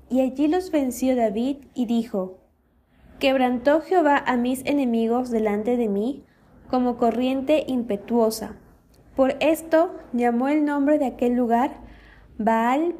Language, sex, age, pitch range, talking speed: Spanish, female, 20-39, 230-285 Hz, 125 wpm